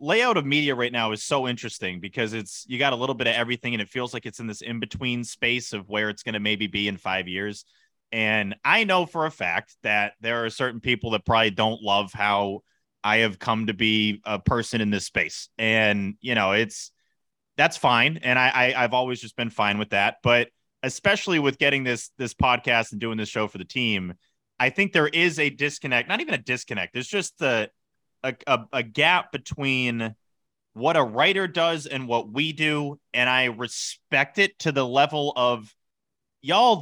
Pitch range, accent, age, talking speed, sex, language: 110-145 Hz, American, 30-49, 205 wpm, male, English